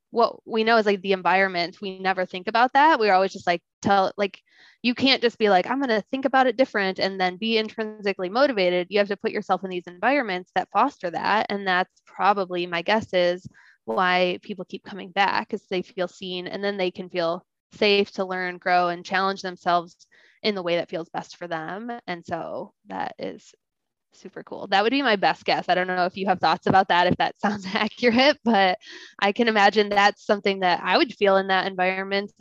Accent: American